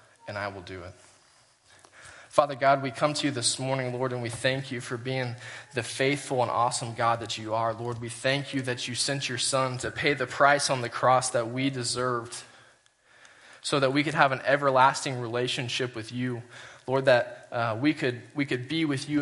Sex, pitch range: male, 120-140 Hz